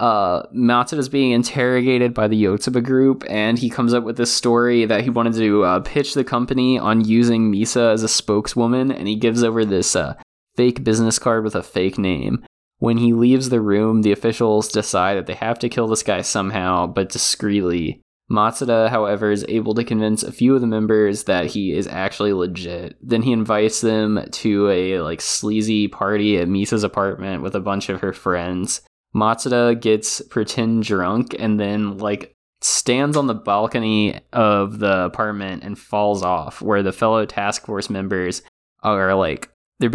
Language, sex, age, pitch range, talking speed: English, male, 20-39, 100-115 Hz, 180 wpm